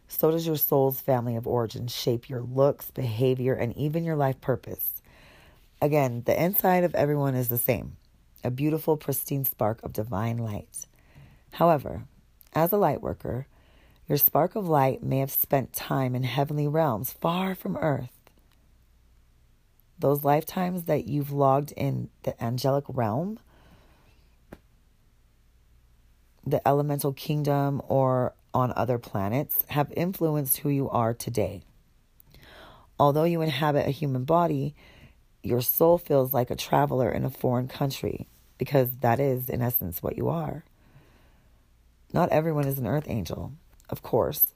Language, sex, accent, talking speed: English, female, American, 140 wpm